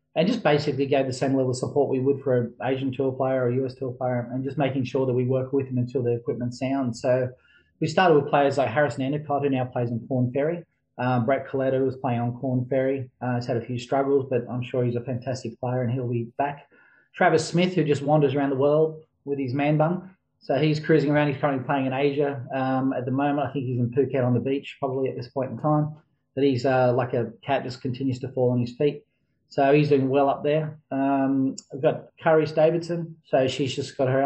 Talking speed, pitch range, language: 245 wpm, 130-145 Hz, English